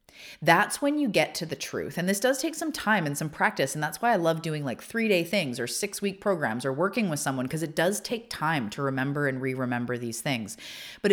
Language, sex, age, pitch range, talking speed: English, female, 30-49, 135-200 Hz, 250 wpm